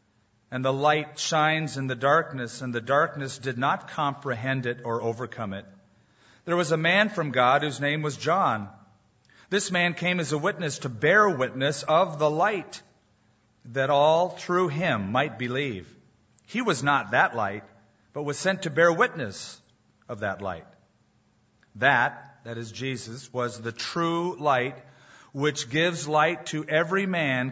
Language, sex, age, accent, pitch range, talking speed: English, male, 40-59, American, 115-165 Hz, 160 wpm